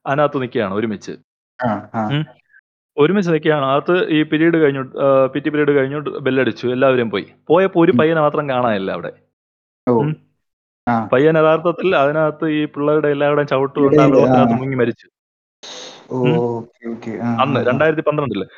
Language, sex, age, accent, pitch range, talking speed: Malayalam, male, 30-49, native, 125-160 Hz, 105 wpm